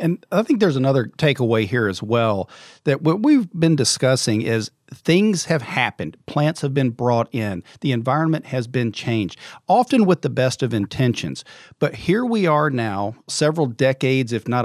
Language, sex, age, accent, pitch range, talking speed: English, male, 50-69, American, 120-150 Hz, 175 wpm